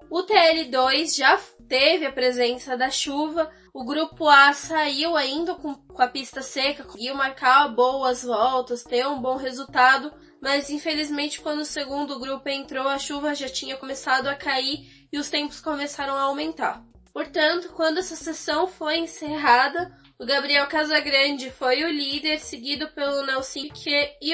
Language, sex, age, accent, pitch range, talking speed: Portuguese, female, 10-29, Brazilian, 255-300 Hz, 155 wpm